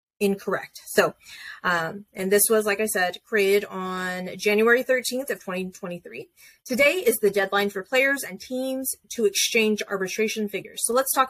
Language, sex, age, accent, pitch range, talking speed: English, female, 30-49, American, 190-250 Hz, 160 wpm